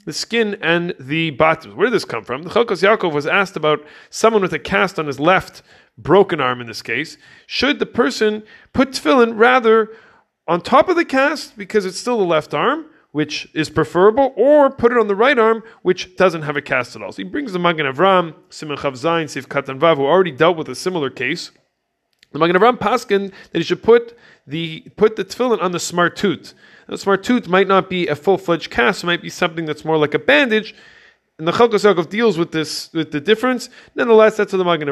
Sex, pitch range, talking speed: male, 155-220 Hz, 220 wpm